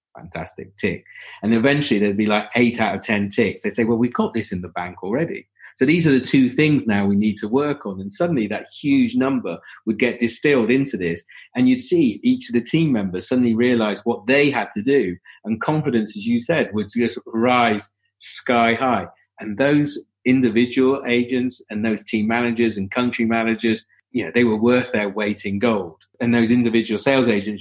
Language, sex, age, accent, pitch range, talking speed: English, male, 40-59, British, 105-130 Hz, 205 wpm